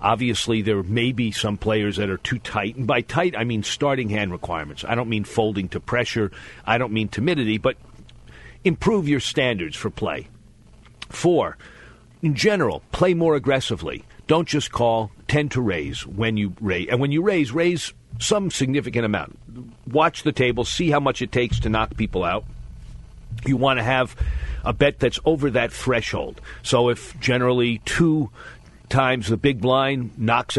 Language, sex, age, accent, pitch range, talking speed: English, male, 50-69, American, 105-135 Hz, 175 wpm